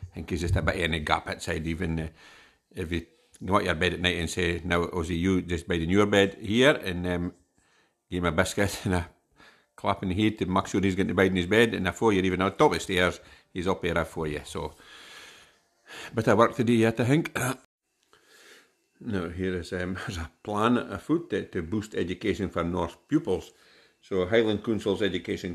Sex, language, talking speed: male, English, 215 wpm